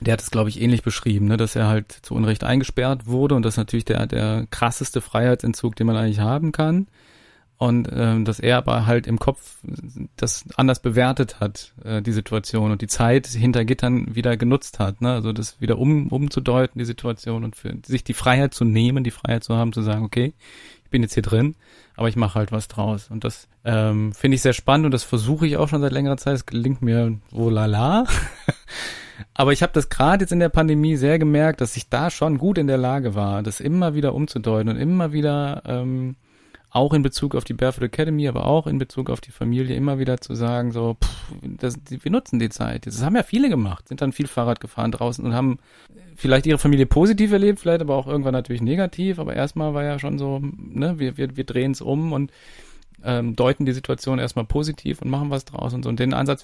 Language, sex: German, male